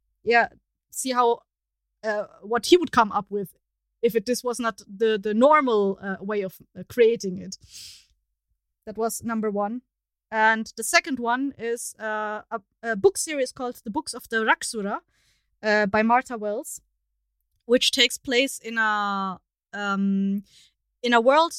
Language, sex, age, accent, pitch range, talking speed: English, female, 20-39, German, 210-260 Hz, 160 wpm